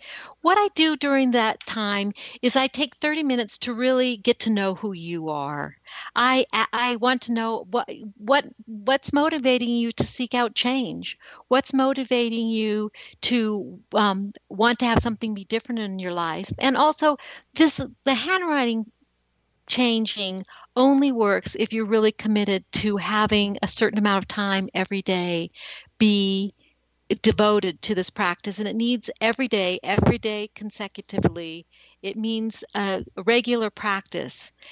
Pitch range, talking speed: 200-245 Hz, 150 wpm